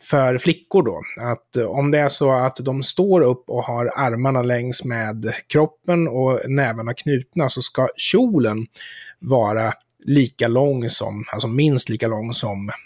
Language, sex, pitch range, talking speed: Swedish, male, 125-165 Hz, 155 wpm